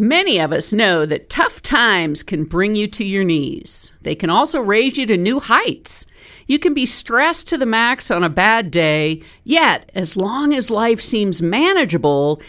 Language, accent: English, American